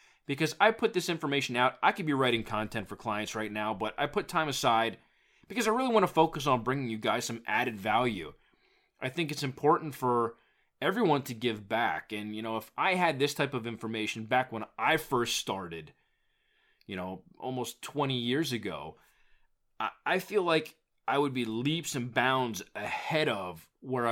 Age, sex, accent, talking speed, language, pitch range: 20-39, male, American, 185 wpm, English, 115-145 Hz